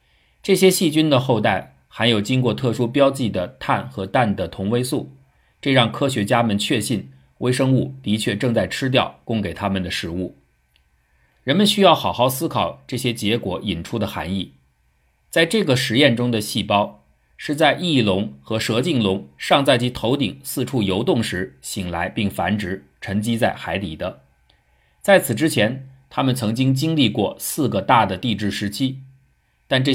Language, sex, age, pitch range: Chinese, male, 50-69, 95-125 Hz